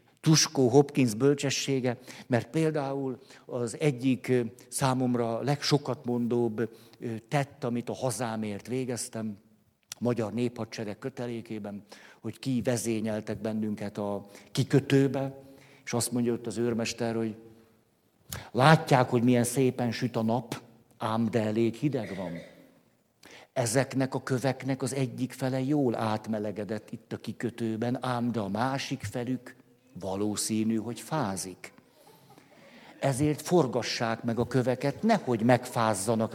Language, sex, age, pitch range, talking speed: Hungarian, male, 50-69, 115-135 Hz, 115 wpm